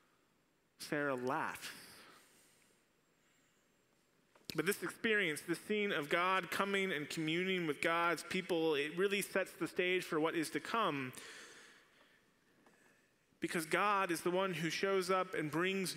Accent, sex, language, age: American, male, English, 30-49